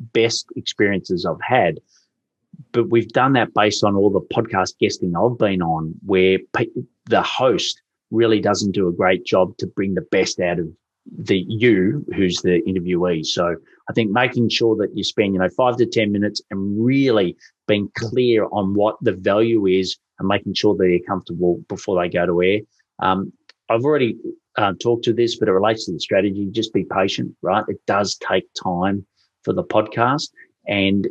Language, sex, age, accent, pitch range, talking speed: English, male, 30-49, Australian, 95-115 Hz, 185 wpm